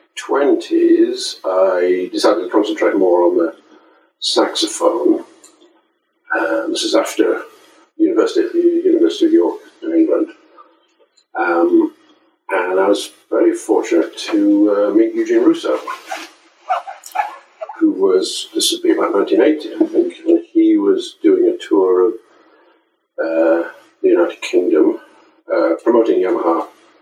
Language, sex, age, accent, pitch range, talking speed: English, male, 50-69, British, 335-400 Hz, 120 wpm